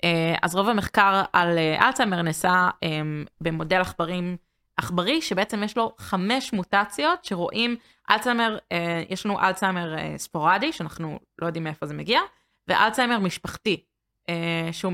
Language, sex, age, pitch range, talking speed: Hebrew, female, 20-39, 165-205 Hz, 140 wpm